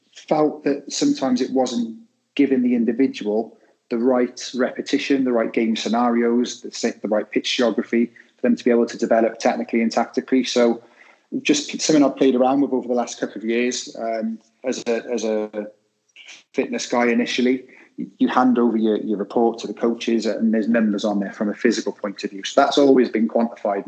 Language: English